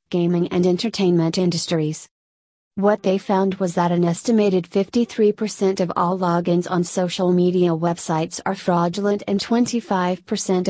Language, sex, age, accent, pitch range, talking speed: English, female, 30-49, American, 175-195 Hz, 130 wpm